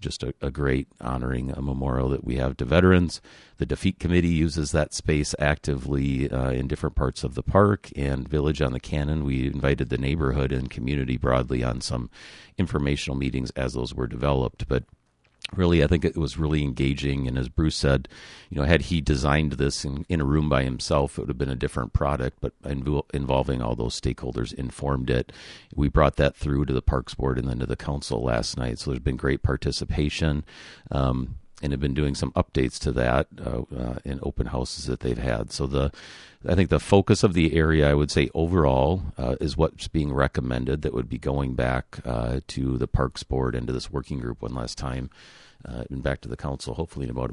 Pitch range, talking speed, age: 65-75 Hz, 215 wpm, 40-59